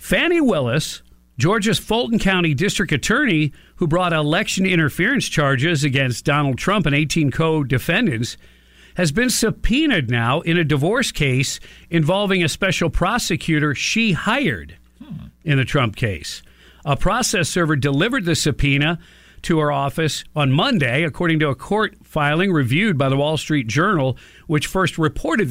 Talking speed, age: 145 wpm, 50-69